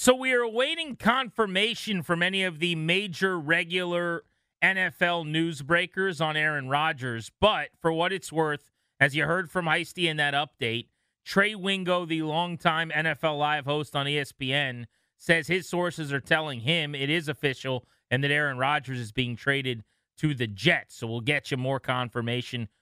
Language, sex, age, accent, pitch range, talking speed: English, male, 30-49, American, 130-175 Hz, 170 wpm